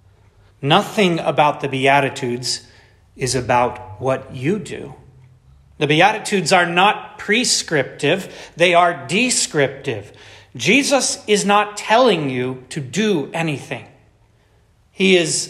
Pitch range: 115-195 Hz